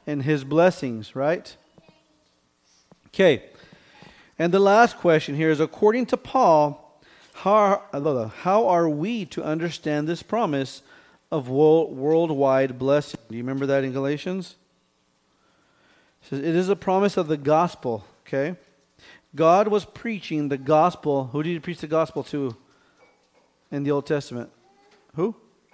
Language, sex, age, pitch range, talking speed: English, male, 40-59, 135-175 Hz, 140 wpm